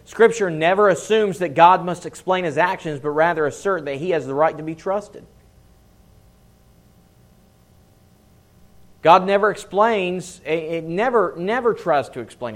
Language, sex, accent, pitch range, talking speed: English, male, American, 130-190 Hz, 140 wpm